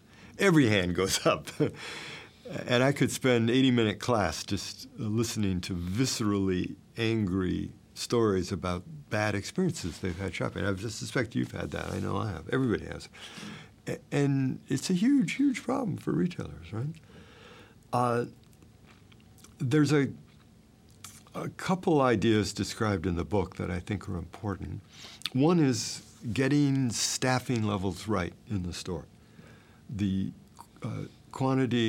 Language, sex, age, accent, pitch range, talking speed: English, male, 60-79, American, 95-125 Hz, 130 wpm